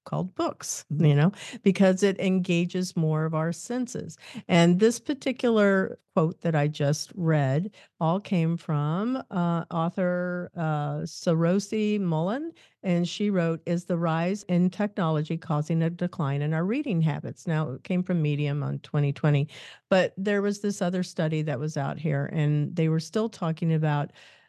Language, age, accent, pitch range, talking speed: English, 50-69, American, 150-185 Hz, 160 wpm